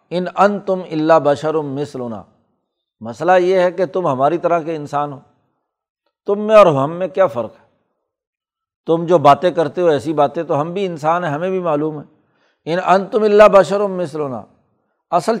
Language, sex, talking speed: Urdu, male, 175 wpm